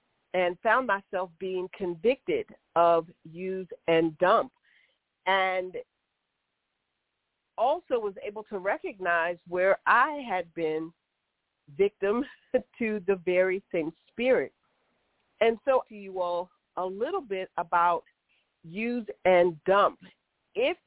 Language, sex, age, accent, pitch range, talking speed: English, female, 50-69, American, 190-285 Hz, 110 wpm